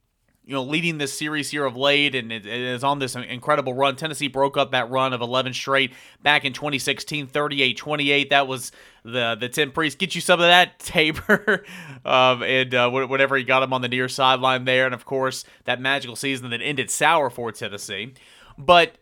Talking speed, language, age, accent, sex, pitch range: 200 wpm, English, 30-49, American, male, 125-145 Hz